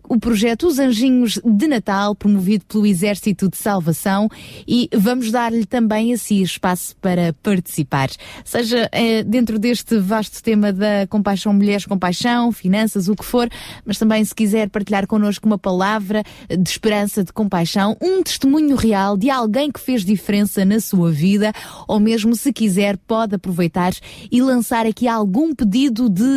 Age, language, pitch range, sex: 20-39, Portuguese, 195-230 Hz, female